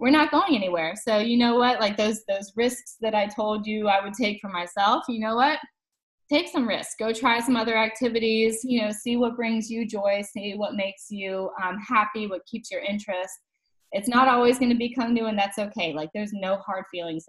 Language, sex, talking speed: English, female, 225 wpm